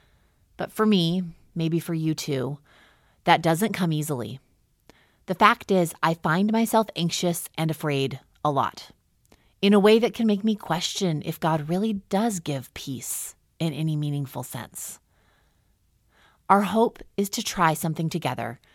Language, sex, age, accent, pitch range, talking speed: English, female, 30-49, American, 145-195 Hz, 150 wpm